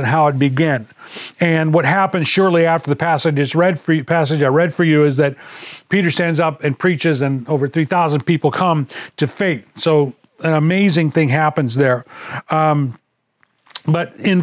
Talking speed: 185 wpm